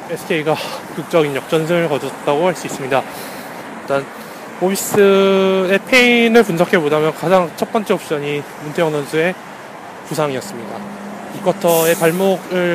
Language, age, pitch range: Korean, 20-39, 155-210 Hz